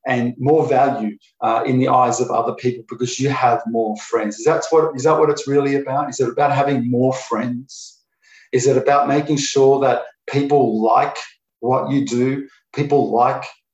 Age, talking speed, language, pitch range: 40-59, 190 wpm, English, 125-145 Hz